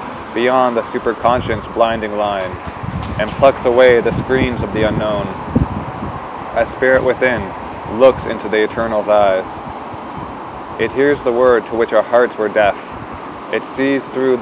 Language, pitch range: English, 105-120 Hz